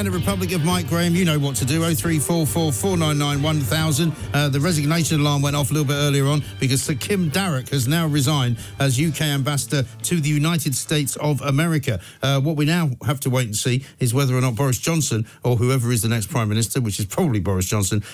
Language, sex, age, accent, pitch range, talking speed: English, male, 50-69, British, 115-150 Hz, 210 wpm